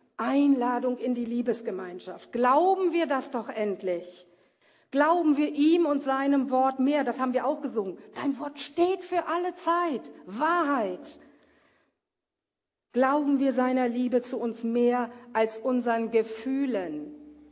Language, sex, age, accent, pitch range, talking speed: German, female, 50-69, German, 235-305 Hz, 130 wpm